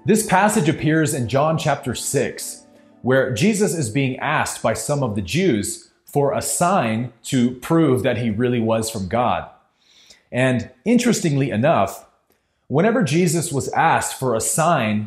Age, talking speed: 30-49, 150 wpm